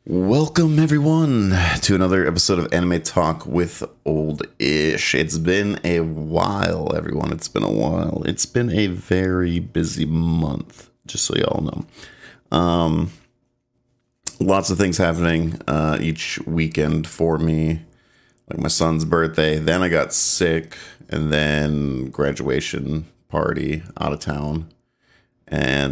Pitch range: 75-90 Hz